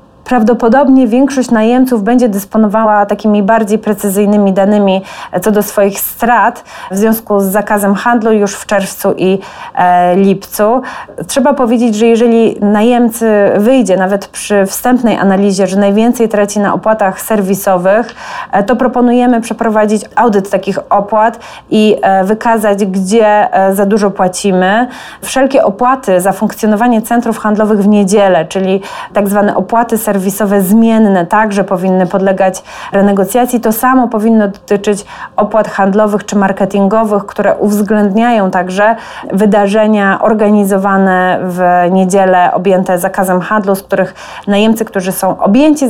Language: Polish